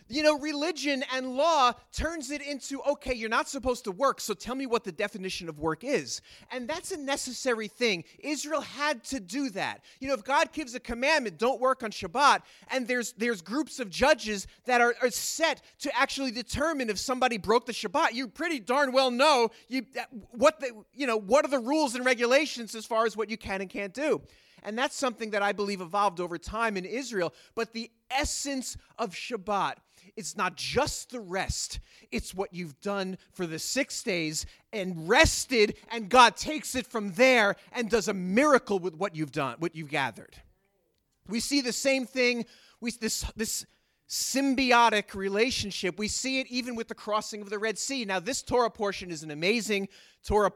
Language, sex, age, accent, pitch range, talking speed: English, male, 30-49, American, 200-265 Hz, 195 wpm